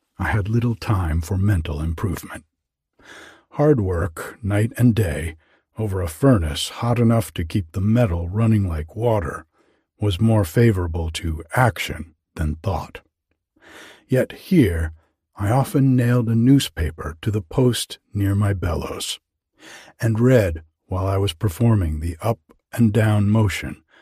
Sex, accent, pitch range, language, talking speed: male, American, 85-115 Hz, English, 130 wpm